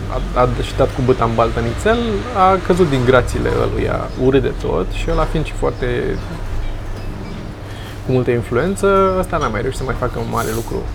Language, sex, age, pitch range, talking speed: Romanian, male, 20-39, 105-150 Hz, 175 wpm